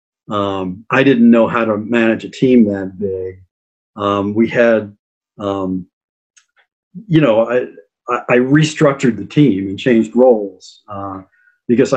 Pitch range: 100-125 Hz